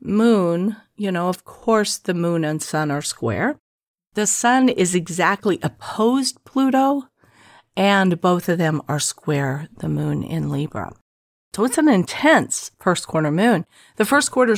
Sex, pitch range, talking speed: female, 160-230 Hz, 150 wpm